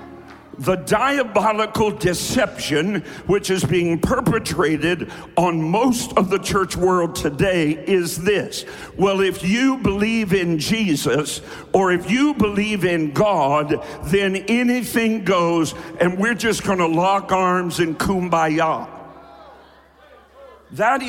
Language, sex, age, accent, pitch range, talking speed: English, male, 60-79, American, 180-230 Hz, 115 wpm